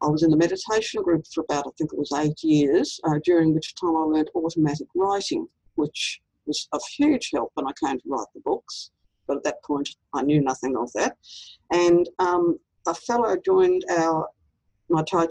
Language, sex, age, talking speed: English, female, 60-79, 195 wpm